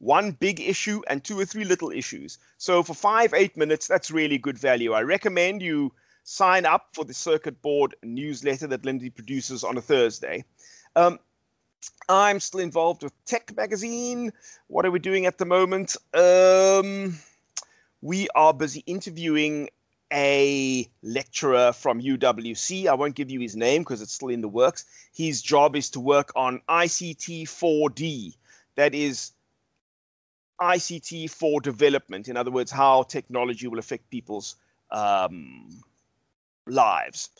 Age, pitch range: 30-49, 135-185 Hz